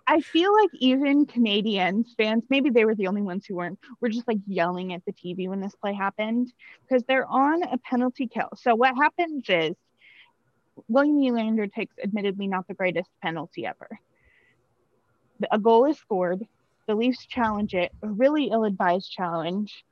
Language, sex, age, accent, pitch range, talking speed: English, female, 20-39, American, 205-260 Hz, 170 wpm